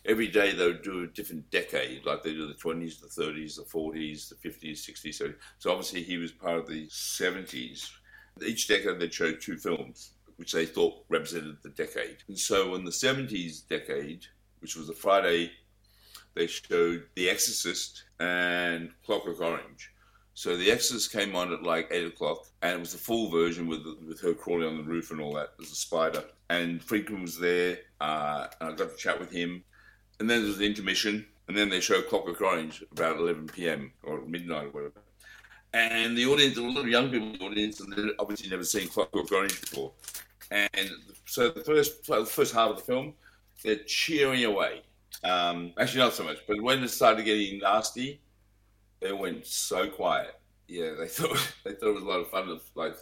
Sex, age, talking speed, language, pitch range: male, 60-79, 195 wpm, English, 85-115 Hz